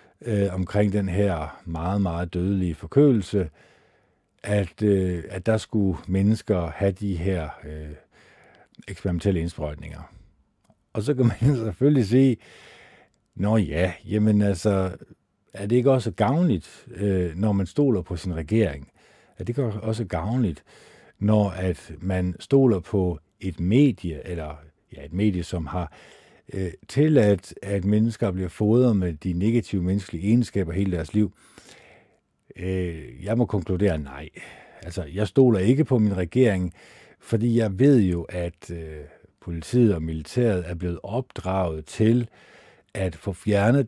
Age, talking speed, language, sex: 50-69, 140 wpm, Danish, male